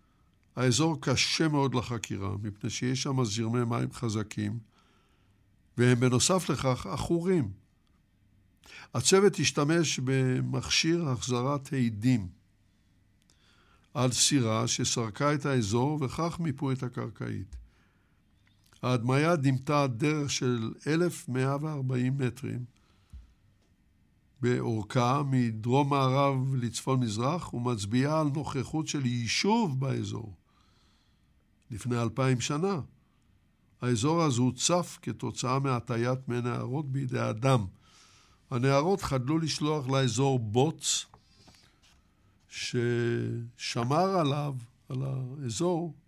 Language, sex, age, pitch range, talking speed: Hebrew, male, 60-79, 105-145 Hz, 80 wpm